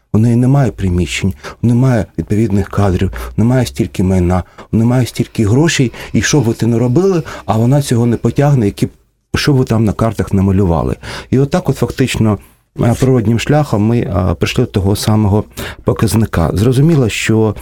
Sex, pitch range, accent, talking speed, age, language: male, 95-125 Hz, native, 175 wpm, 40-59, Russian